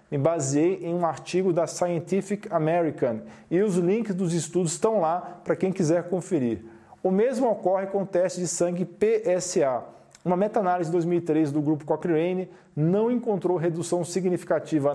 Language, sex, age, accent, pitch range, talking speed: Portuguese, male, 40-59, Brazilian, 155-190 Hz, 155 wpm